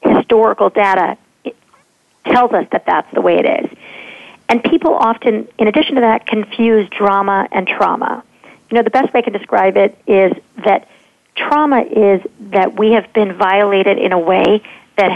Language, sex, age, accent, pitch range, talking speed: English, female, 50-69, American, 195-235 Hz, 175 wpm